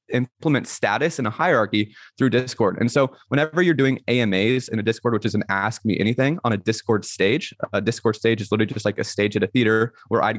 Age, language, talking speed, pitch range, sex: 20-39, English, 230 wpm, 105-125 Hz, male